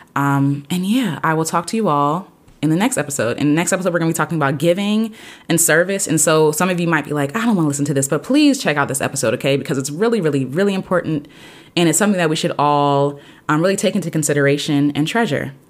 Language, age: English, 20-39